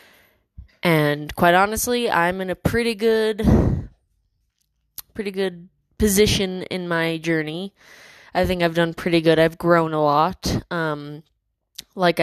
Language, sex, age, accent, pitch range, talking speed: English, female, 20-39, American, 165-195 Hz, 130 wpm